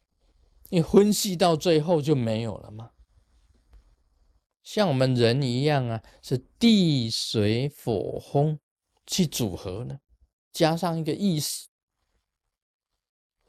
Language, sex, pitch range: Chinese, male, 105-160 Hz